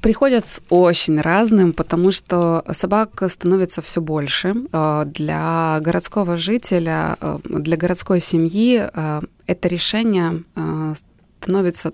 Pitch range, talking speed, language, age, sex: 170-210 Hz, 95 wpm, Ukrainian, 20-39, female